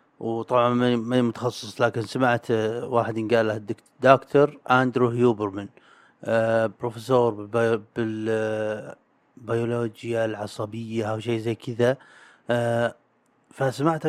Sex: male